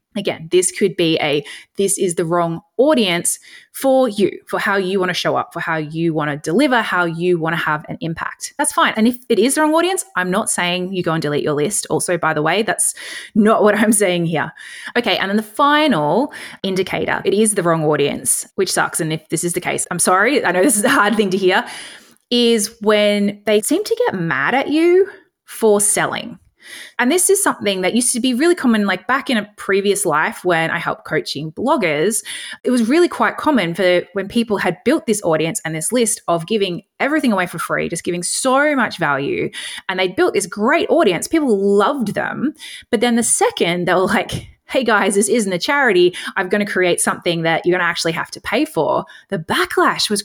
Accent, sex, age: Australian, female, 20-39